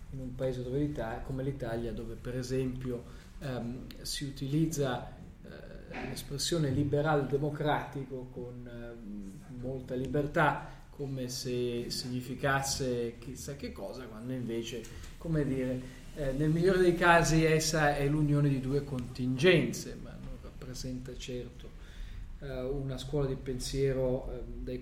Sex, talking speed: male, 125 wpm